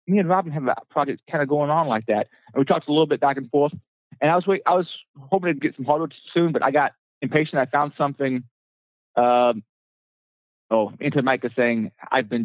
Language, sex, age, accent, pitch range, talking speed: English, male, 30-49, American, 115-145 Hz, 225 wpm